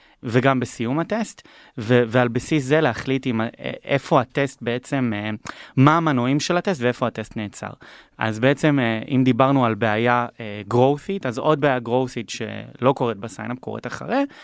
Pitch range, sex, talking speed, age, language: 115-150 Hz, male, 160 wpm, 20-39, Hebrew